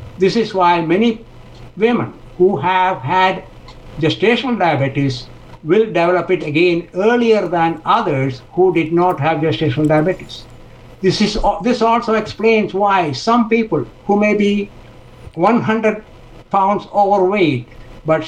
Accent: Indian